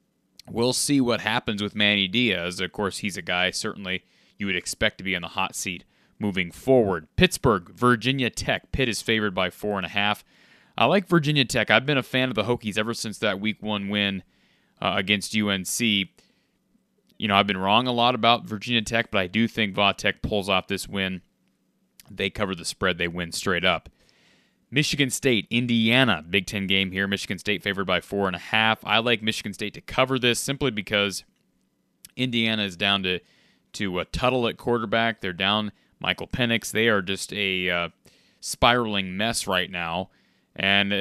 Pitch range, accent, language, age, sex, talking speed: 95-120 Hz, American, English, 30-49, male, 190 wpm